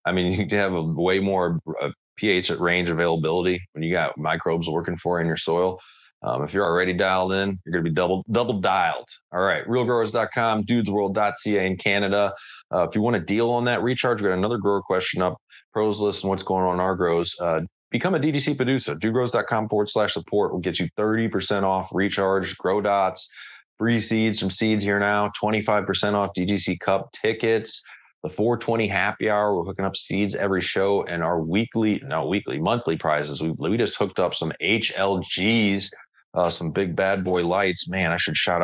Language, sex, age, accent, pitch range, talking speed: English, male, 30-49, American, 90-105 Hz, 195 wpm